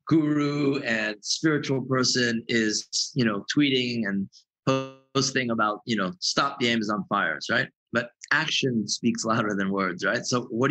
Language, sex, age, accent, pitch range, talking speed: English, male, 30-49, American, 115-145 Hz, 150 wpm